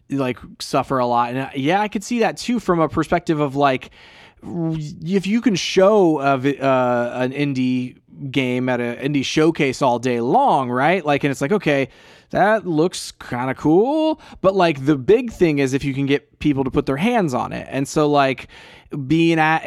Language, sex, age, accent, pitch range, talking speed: English, male, 20-39, American, 125-155 Hz, 200 wpm